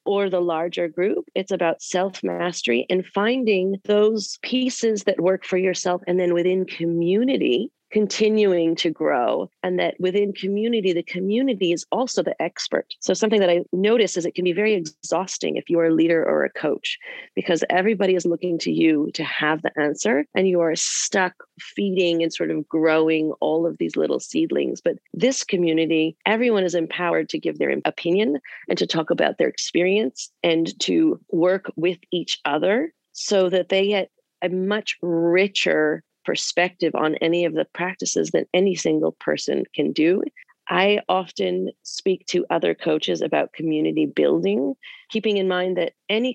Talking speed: 170 wpm